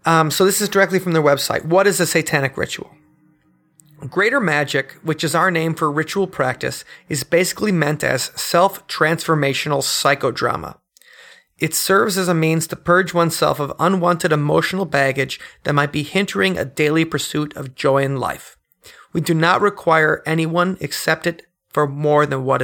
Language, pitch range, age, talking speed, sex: English, 145-175 Hz, 30-49, 165 wpm, male